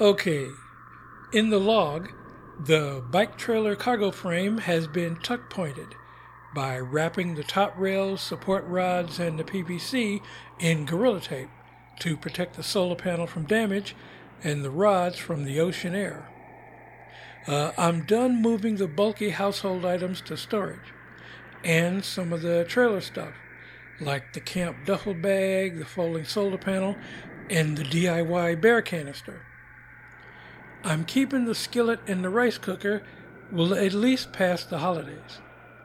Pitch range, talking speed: 160-200 Hz, 140 wpm